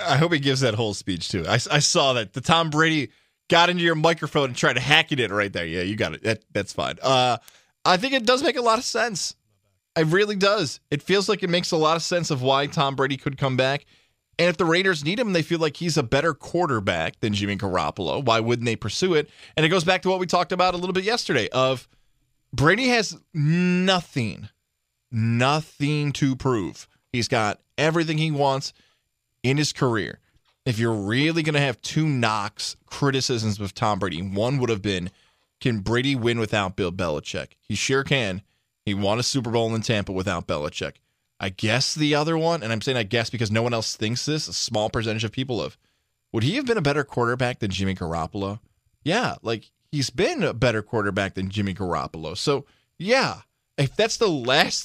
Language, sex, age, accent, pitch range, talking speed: English, male, 20-39, American, 110-165 Hz, 210 wpm